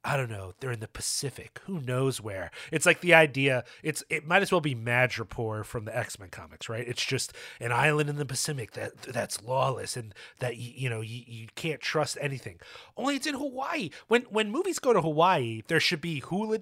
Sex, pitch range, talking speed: male, 125-185 Hz, 210 wpm